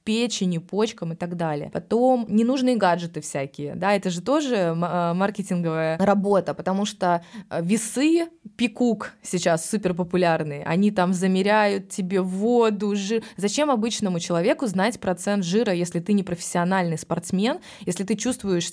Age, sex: 20-39, female